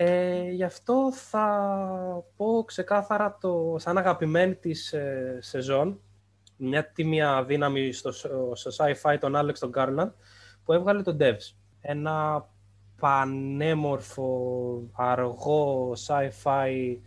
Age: 20-39